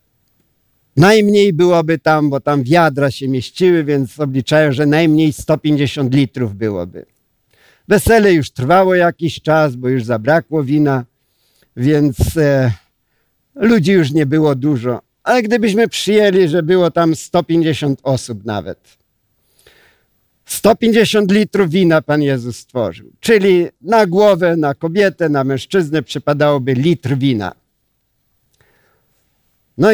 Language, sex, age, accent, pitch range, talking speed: Polish, male, 50-69, native, 135-180 Hz, 110 wpm